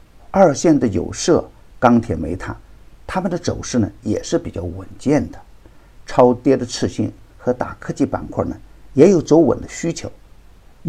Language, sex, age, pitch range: Chinese, male, 50-69, 100-125 Hz